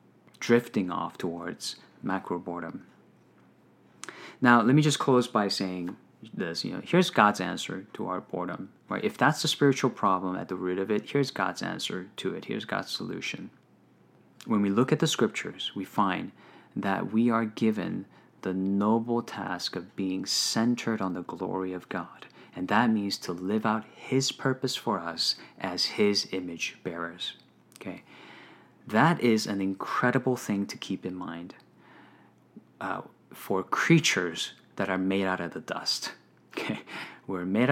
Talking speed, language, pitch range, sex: 155 wpm, English, 95-130 Hz, male